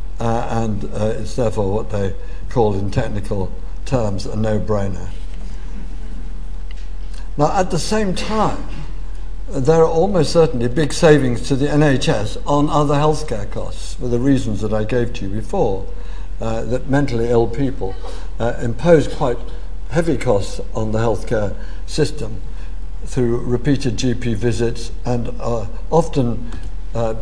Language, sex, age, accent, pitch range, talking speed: English, male, 60-79, British, 95-135 Hz, 140 wpm